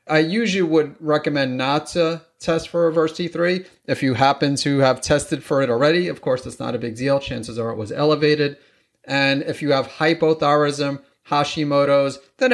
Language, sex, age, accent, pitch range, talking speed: English, male, 30-49, American, 125-155 Hz, 180 wpm